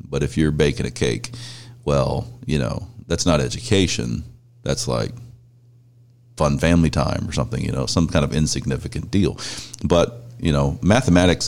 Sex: male